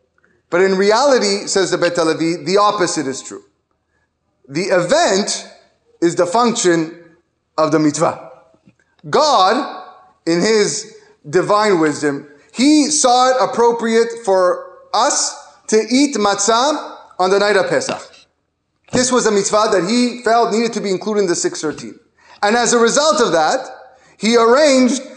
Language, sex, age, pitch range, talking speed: English, male, 30-49, 190-255 Hz, 140 wpm